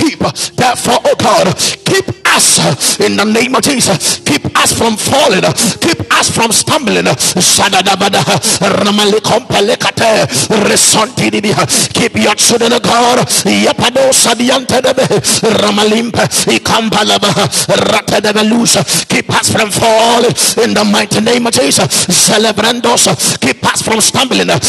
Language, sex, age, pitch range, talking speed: English, male, 50-69, 210-245 Hz, 95 wpm